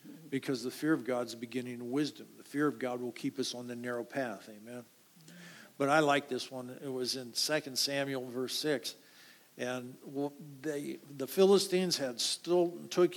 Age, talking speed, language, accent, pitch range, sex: 50-69, 185 wpm, English, American, 130-185 Hz, male